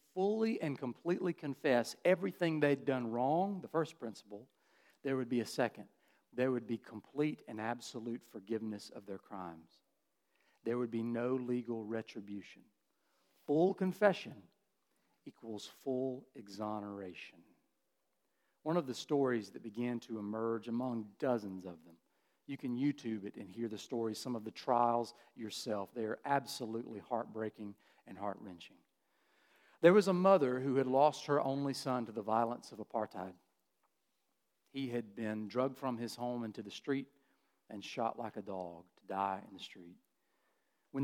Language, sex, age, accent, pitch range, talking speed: English, male, 50-69, American, 110-140 Hz, 150 wpm